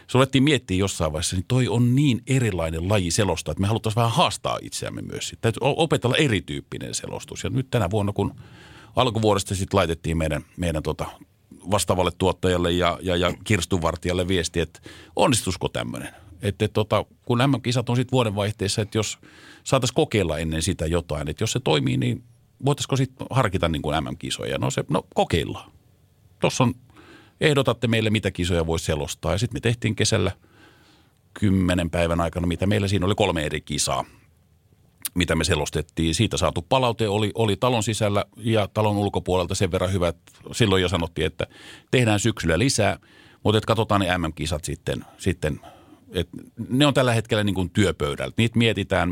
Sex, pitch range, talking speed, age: male, 85-115 Hz, 160 wpm, 50-69